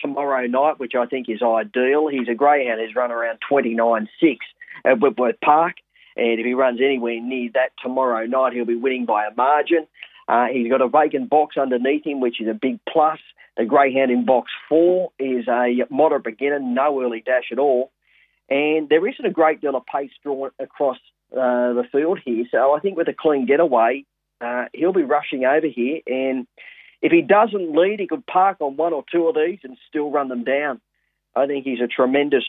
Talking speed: 205 wpm